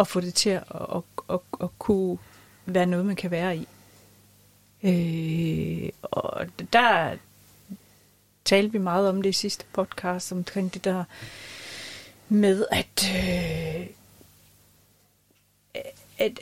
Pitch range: 170-230 Hz